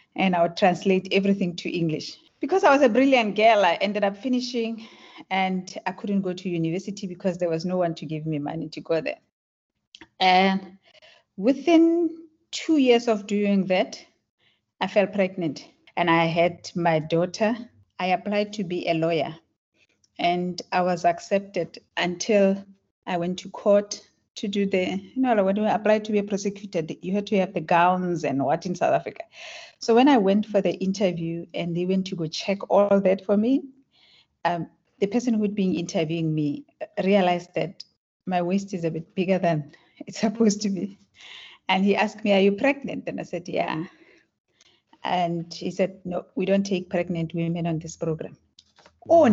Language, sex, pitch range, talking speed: English, female, 175-210 Hz, 185 wpm